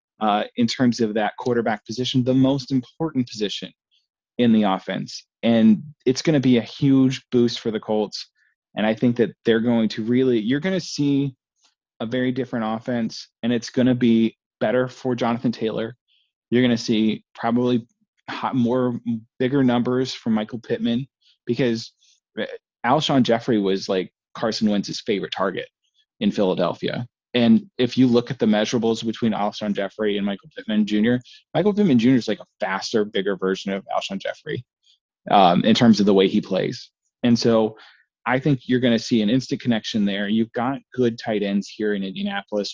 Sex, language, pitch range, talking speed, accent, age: male, English, 110-125 Hz, 180 wpm, American, 20-39